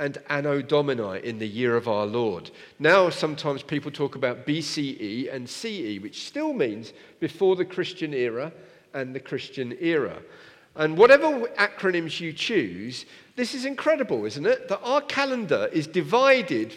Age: 50-69